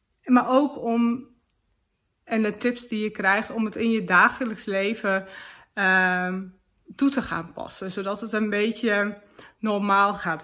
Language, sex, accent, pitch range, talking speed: Dutch, female, Dutch, 185-215 Hz, 150 wpm